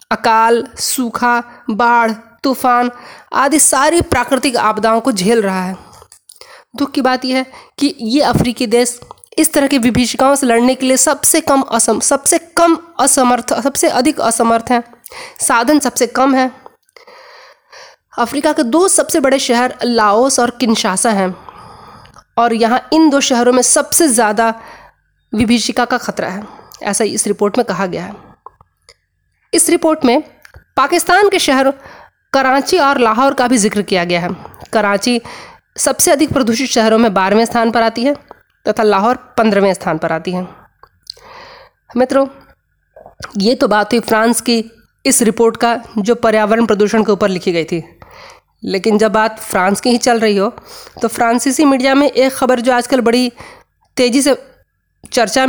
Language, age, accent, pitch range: Hindi, 20-39, native, 225-280 Hz